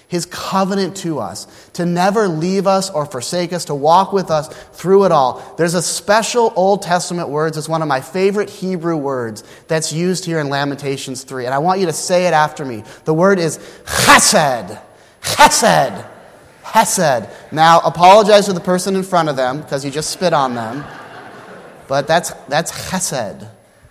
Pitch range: 145-185 Hz